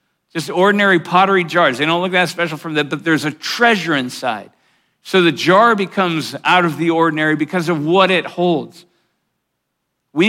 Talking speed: 175 wpm